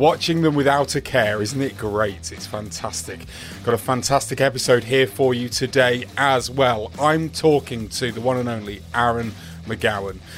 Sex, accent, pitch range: male, British, 110-135 Hz